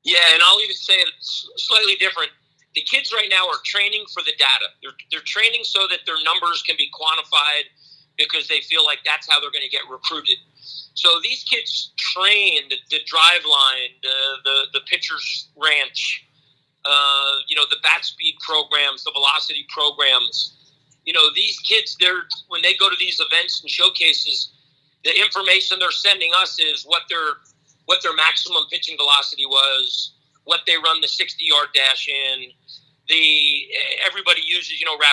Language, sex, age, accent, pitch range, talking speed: English, male, 40-59, American, 140-180 Hz, 170 wpm